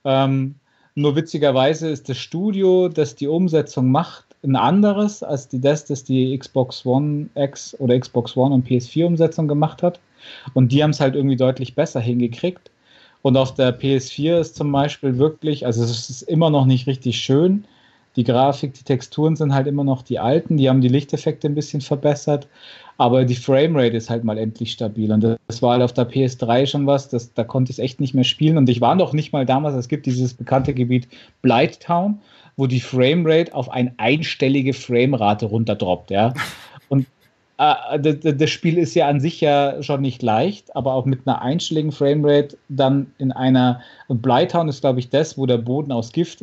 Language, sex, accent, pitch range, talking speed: German, male, German, 125-150 Hz, 195 wpm